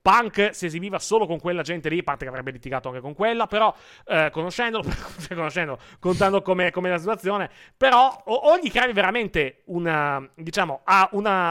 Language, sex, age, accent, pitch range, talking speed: Italian, male, 30-49, native, 135-195 Hz, 170 wpm